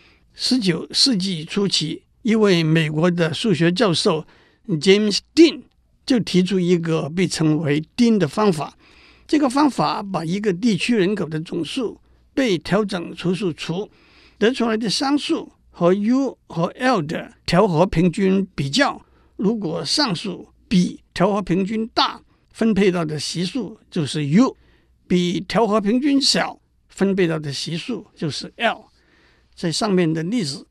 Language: Chinese